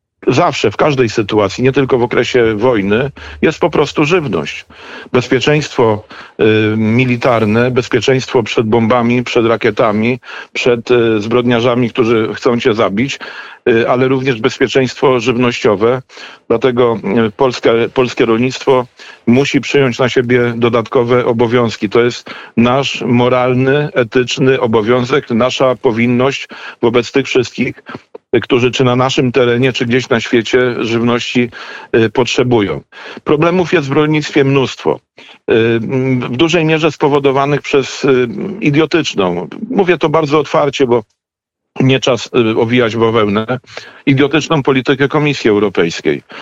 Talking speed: 115 wpm